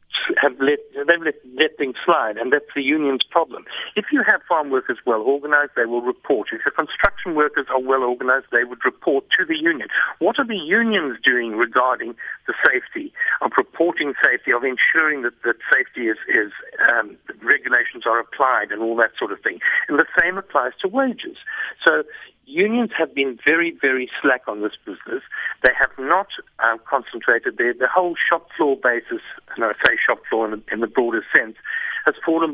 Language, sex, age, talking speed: English, male, 60-79, 195 wpm